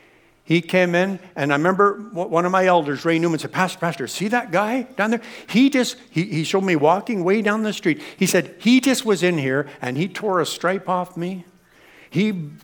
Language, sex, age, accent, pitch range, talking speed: English, male, 60-79, American, 155-215 Hz, 220 wpm